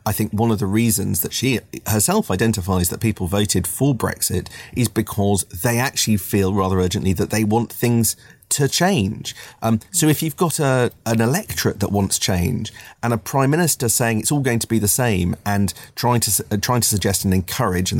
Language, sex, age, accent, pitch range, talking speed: English, male, 30-49, British, 95-115 Hz, 205 wpm